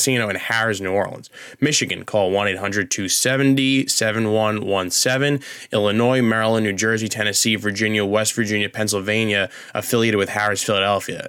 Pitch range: 105-130 Hz